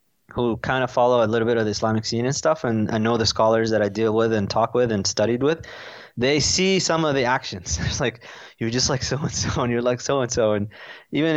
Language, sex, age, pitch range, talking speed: English, male, 20-39, 110-140 Hz, 265 wpm